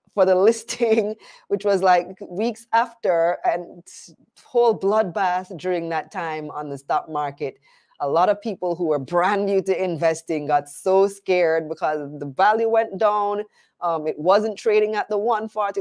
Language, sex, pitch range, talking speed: English, female, 165-220 Hz, 165 wpm